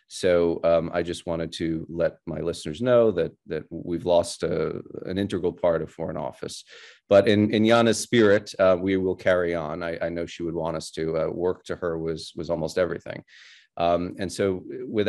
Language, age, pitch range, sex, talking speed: English, 30-49, 85-100 Hz, male, 200 wpm